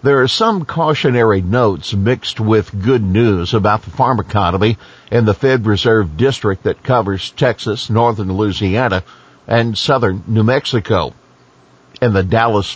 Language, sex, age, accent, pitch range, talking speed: English, male, 50-69, American, 95-125 Hz, 140 wpm